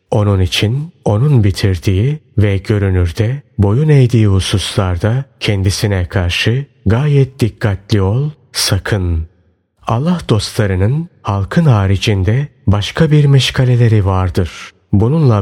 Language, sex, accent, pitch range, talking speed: Turkish, male, native, 95-130 Hz, 95 wpm